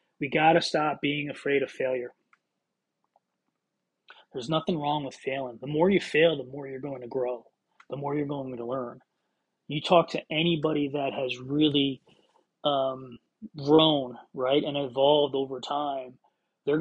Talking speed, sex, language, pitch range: 155 wpm, male, English, 135-165 Hz